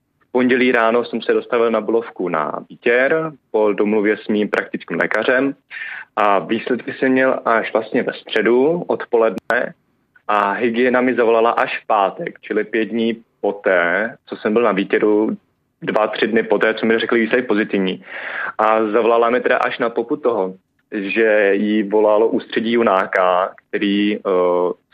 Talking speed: 155 wpm